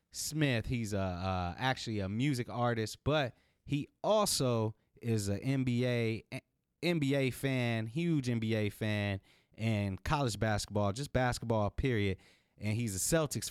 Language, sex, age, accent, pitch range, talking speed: English, male, 30-49, American, 105-145 Hz, 125 wpm